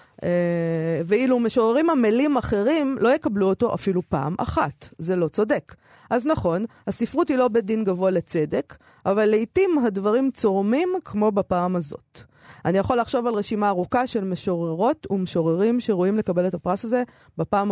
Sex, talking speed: female, 150 wpm